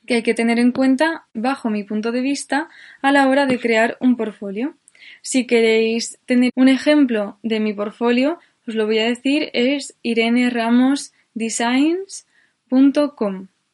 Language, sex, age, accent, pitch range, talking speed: Spanish, female, 20-39, Spanish, 225-275 Hz, 150 wpm